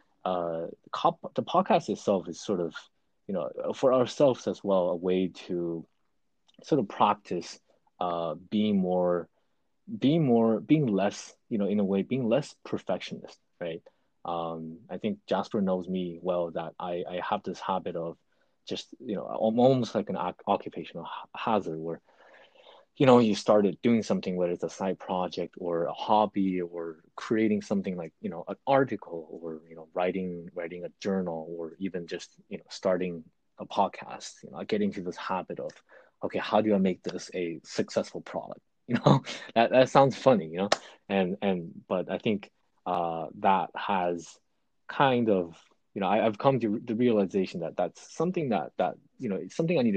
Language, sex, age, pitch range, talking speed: English, male, 20-39, 85-110 Hz, 180 wpm